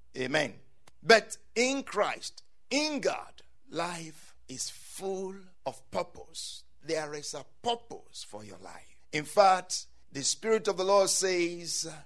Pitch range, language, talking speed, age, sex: 180-265 Hz, English, 130 wpm, 60-79, male